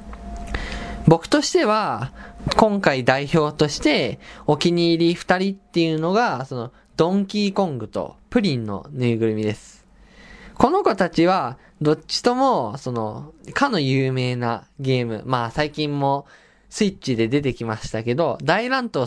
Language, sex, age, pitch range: Japanese, male, 20-39, 120-200 Hz